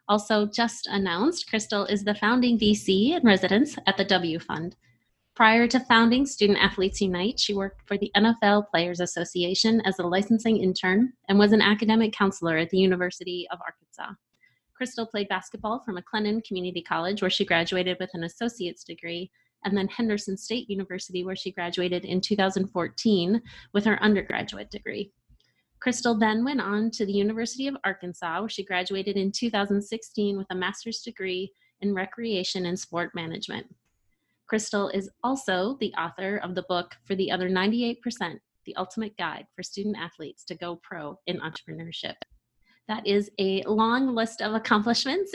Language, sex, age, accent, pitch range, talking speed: English, female, 30-49, American, 185-225 Hz, 160 wpm